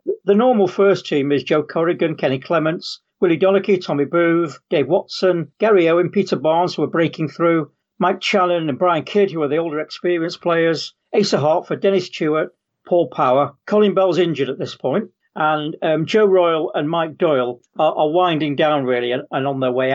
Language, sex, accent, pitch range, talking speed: English, male, British, 155-200 Hz, 190 wpm